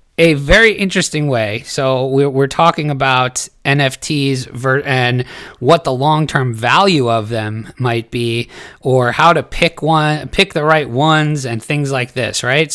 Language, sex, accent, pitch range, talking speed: English, male, American, 120-150 Hz, 155 wpm